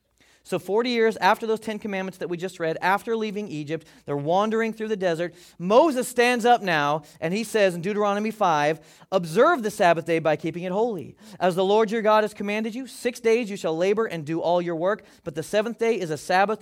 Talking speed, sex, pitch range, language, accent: 225 wpm, male, 155-215 Hz, English, American